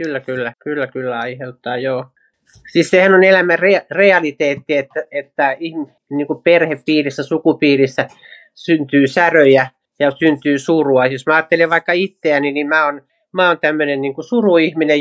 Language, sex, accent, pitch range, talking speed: Finnish, male, native, 140-170 Hz, 145 wpm